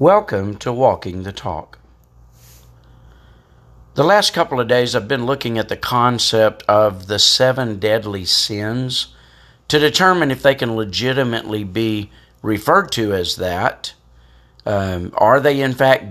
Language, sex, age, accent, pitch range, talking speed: English, male, 50-69, American, 85-135 Hz, 140 wpm